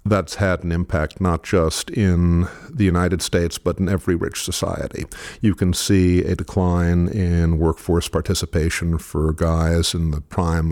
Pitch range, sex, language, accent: 80-95 Hz, male, English, American